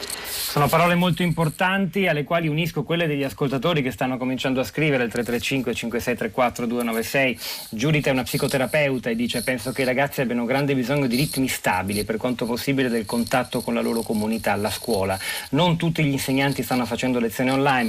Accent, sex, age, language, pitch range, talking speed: native, male, 30-49, Italian, 110-135 Hz, 180 wpm